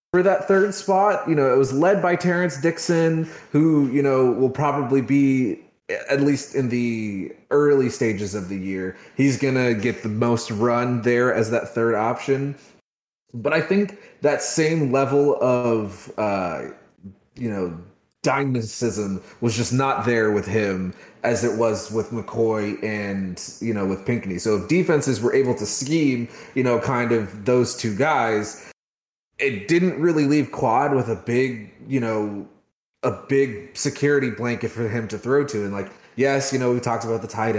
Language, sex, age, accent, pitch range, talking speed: English, male, 30-49, American, 105-140 Hz, 175 wpm